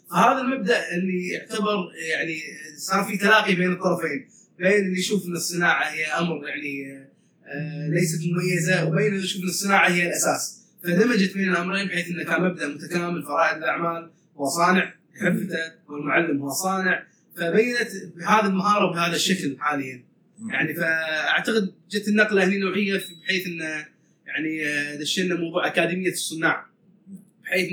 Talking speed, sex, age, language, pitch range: 130 wpm, male, 20-39, Arabic, 165-195 Hz